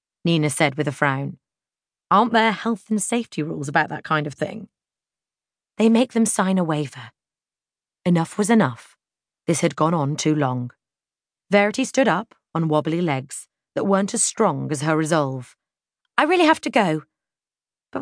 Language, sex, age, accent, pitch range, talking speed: English, female, 30-49, British, 155-240 Hz, 165 wpm